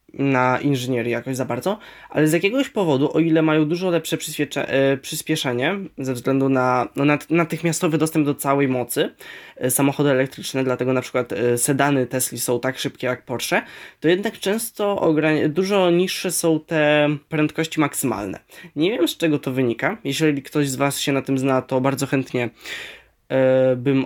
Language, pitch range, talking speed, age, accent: Polish, 135-170 Hz, 150 wpm, 20-39, native